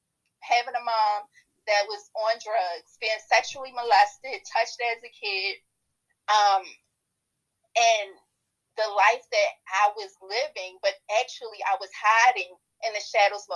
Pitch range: 205-270 Hz